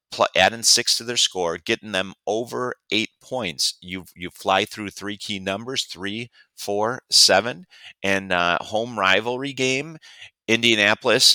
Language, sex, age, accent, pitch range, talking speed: English, male, 30-49, American, 90-110 Hz, 140 wpm